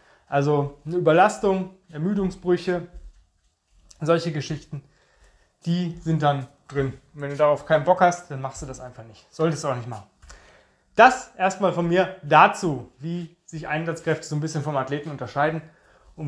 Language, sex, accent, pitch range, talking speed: German, male, German, 150-190 Hz, 155 wpm